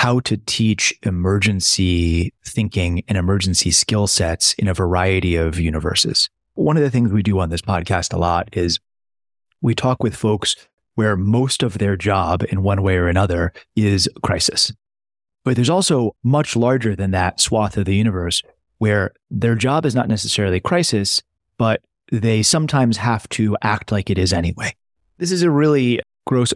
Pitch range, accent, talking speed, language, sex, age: 95-125 Hz, American, 170 wpm, English, male, 30-49